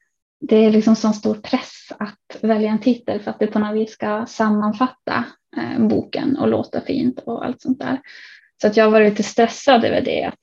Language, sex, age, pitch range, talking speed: Swedish, female, 20-39, 215-255 Hz, 200 wpm